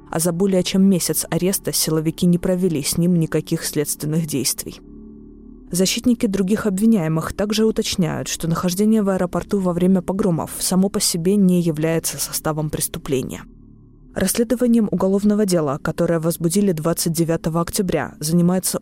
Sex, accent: female, native